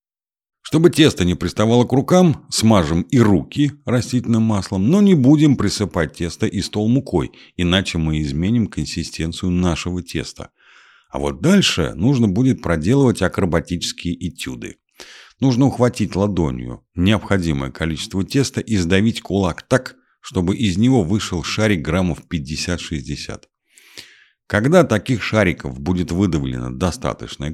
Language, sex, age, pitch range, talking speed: Russian, male, 50-69, 80-110 Hz, 120 wpm